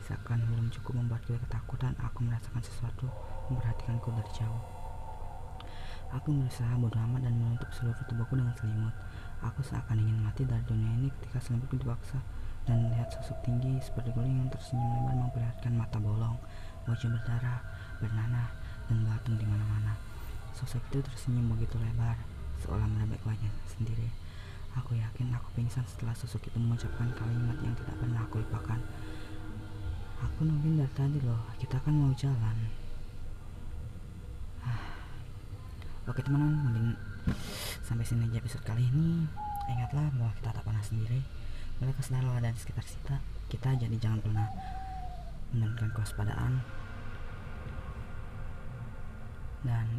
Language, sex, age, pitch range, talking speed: Indonesian, female, 20-39, 105-125 Hz, 135 wpm